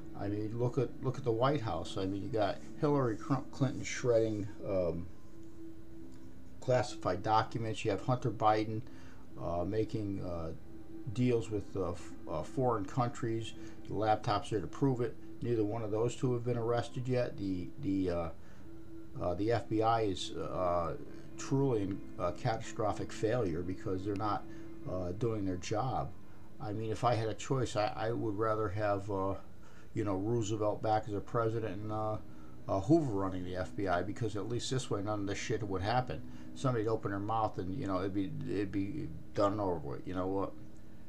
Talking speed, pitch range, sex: 180 wpm, 100-120 Hz, male